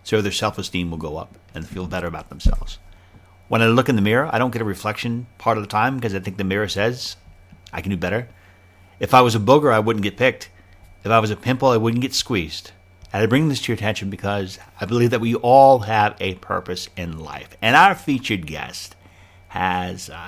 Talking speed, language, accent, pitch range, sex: 230 wpm, English, American, 90-130 Hz, male